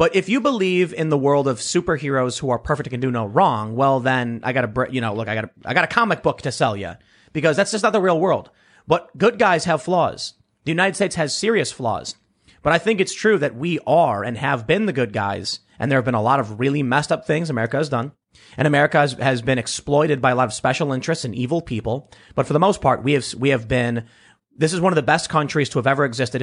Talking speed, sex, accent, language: 260 wpm, male, American, English